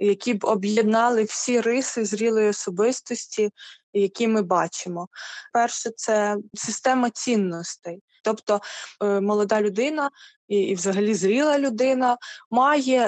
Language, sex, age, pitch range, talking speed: Ukrainian, female, 20-39, 205-255 Hz, 115 wpm